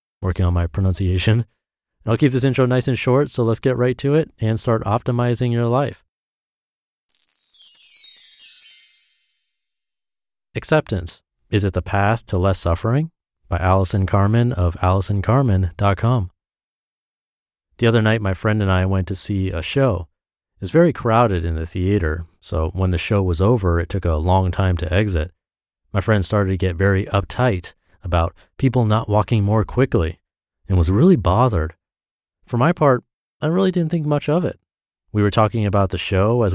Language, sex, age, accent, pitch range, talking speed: English, male, 30-49, American, 90-125 Hz, 165 wpm